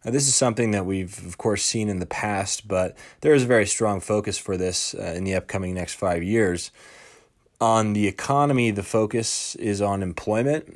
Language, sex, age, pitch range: English, male, 20-39, 90-105 Hz